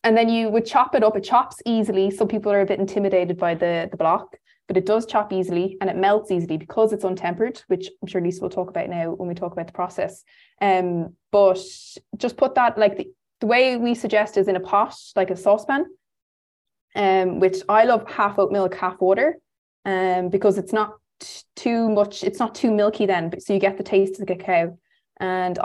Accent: Irish